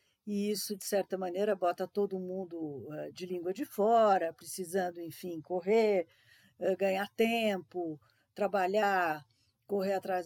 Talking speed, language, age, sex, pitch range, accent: 115 wpm, Portuguese, 50-69, female, 165-215 Hz, Brazilian